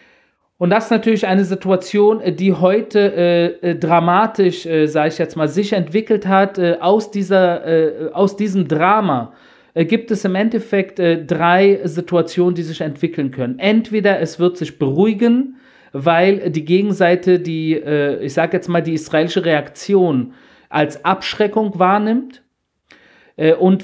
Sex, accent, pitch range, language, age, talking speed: male, German, 170-200 Hz, German, 40-59, 150 wpm